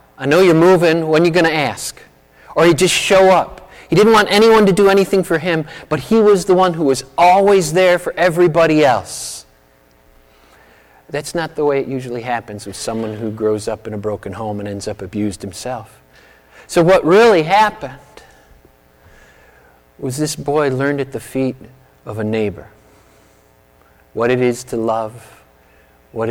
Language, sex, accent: English, male, American